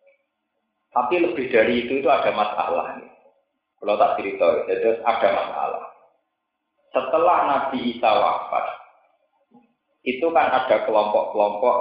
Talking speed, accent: 105 wpm, native